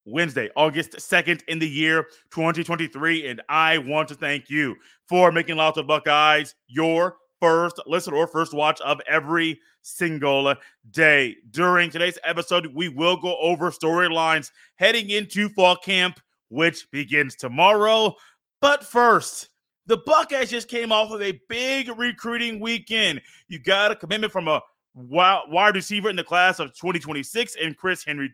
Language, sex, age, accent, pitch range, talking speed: English, male, 30-49, American, 160-225 Hz, 150 wpm